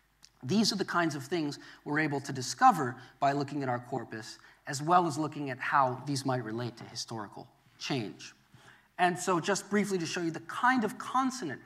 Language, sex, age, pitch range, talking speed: English, male, 30-49, 130-200 Hz, 195 wpm